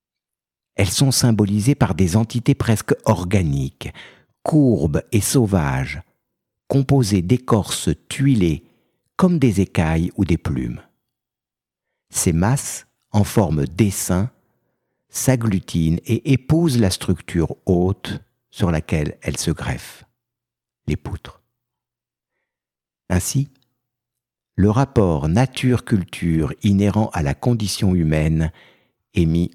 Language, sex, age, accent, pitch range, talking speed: French, male, 60-79, French, 85-120 Hz, 100 wpm